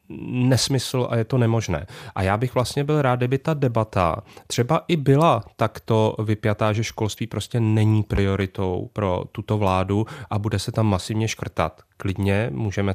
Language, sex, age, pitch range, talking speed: Czech, male, 30-49, 105-130 Hz, 160 wpm